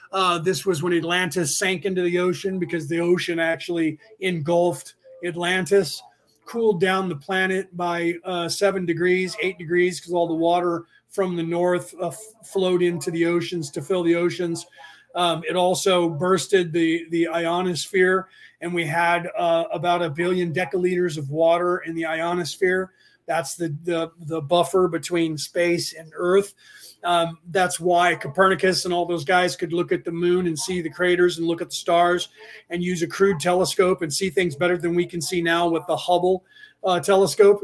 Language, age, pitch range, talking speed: English, 30-49, 170-185 Hz, 175 wpm